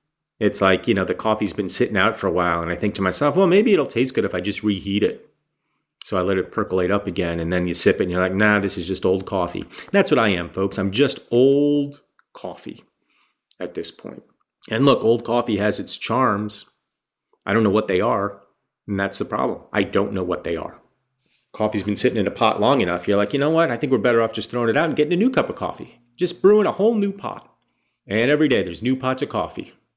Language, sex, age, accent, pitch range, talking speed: English, male, 30-49, American, 100-130 Hz, 250 wpm